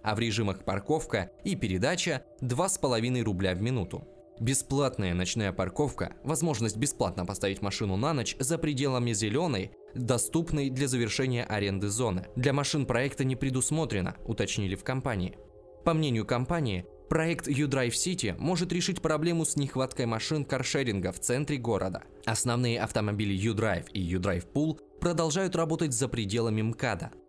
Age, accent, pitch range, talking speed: 20-39, native, 105-160 Hz, 135 wpm